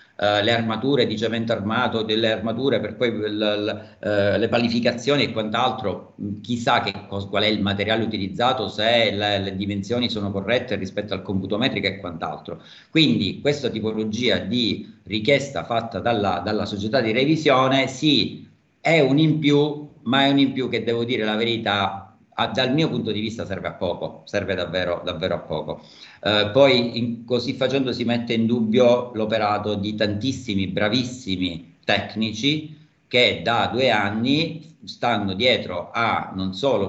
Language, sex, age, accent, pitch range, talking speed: Italian, male, 50-69, native, 100-120 Hz, 155 wpm